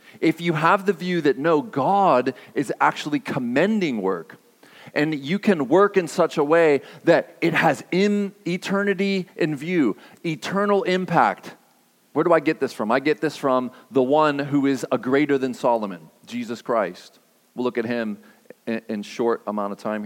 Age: 40-59